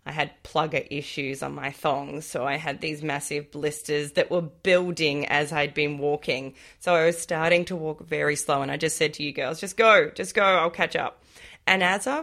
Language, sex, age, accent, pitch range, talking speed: English, female, 20-39, Australian, 150-185 Hz, 220 wpm